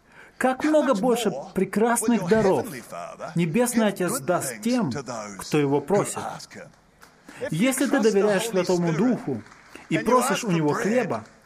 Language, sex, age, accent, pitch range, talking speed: Russian, male, 20-39, native, 175-230 Hz, 115 wpm